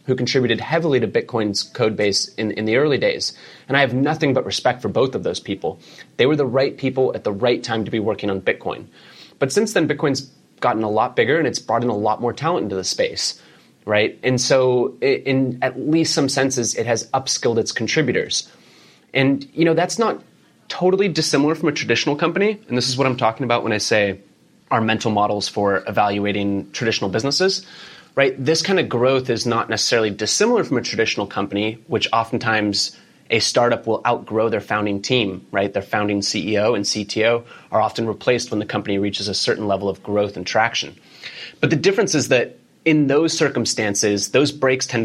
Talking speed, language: 200 wpm, English